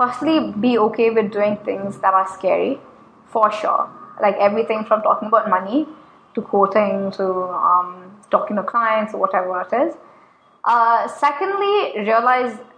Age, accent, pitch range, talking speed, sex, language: 20-39, Indian, 200-260 Hz, 145 wpm, female, English